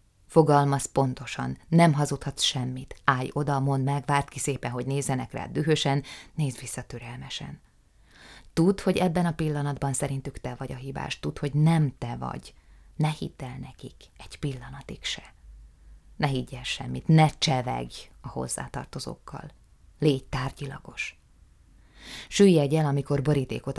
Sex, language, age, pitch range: female, Hungarian, 20-39, 125-150 Hz